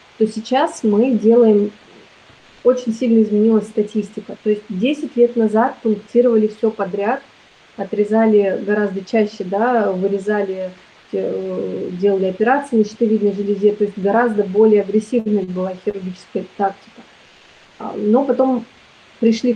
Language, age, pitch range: Russian, 30-49, 205-235 Hz